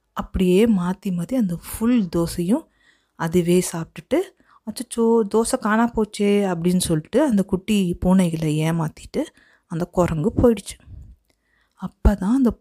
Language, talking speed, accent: Tamil, 120 wpm, native